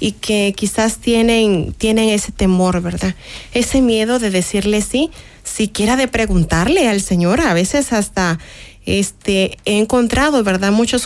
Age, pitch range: 30-49, 195-245 Hz